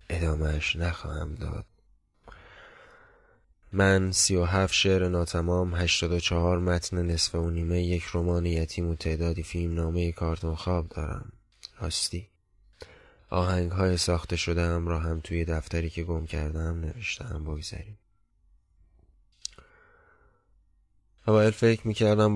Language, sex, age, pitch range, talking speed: Persian, male, 20-39, 85-95 Hz, 95 wpm